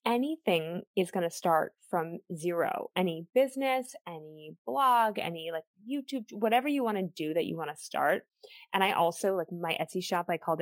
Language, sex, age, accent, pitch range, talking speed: English, female, 20-39, American, 170-210 Hz, 185 wpm